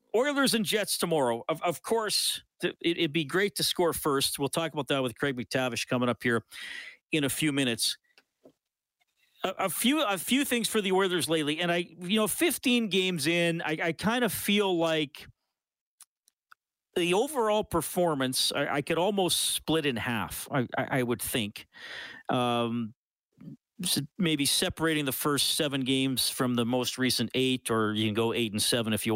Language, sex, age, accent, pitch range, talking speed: English, male, 40-59, American, 120-165 Hz, 175 wpm